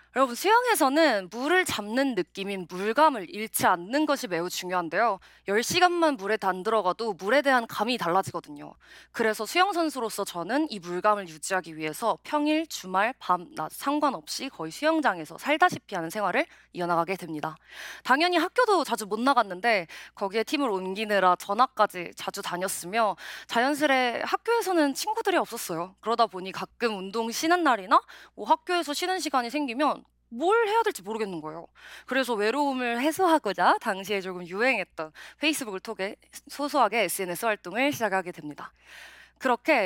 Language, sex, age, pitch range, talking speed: English, female, 20-39, 190-295 Hz, 125 wpm